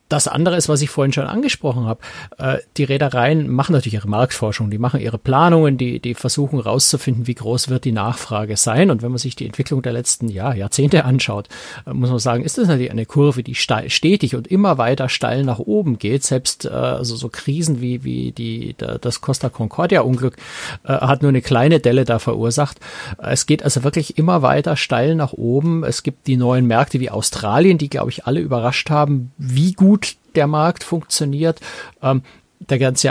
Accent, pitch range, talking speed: German, 120-150 Hz, 190 wpm